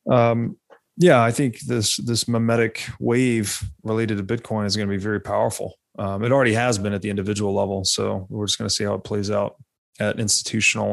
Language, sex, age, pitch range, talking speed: English, male, 30-49, 105-130 Hz, 210 wpm